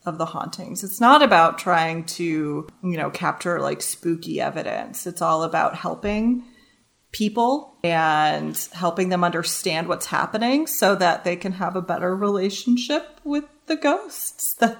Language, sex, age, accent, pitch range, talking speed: English, female, 30-49, American, 175-235 Hz, 150 wpm